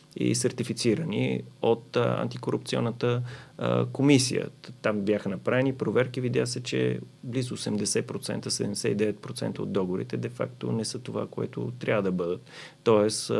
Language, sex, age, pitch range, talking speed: Bulgarian, male, 30-49, 100-125 Hz, 115 wpm